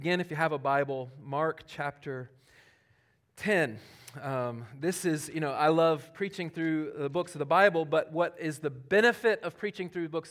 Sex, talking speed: male, 190 wpm